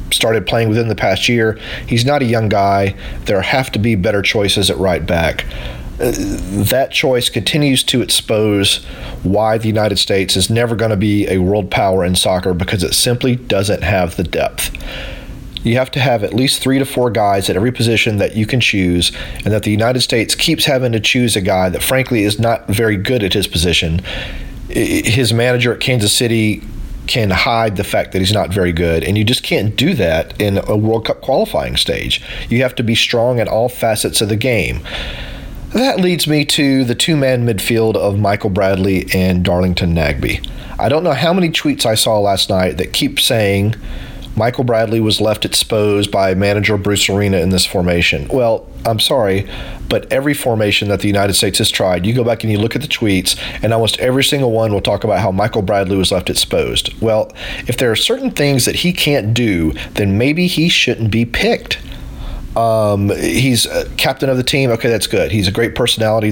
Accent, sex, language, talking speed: American, male, English, 200 wpm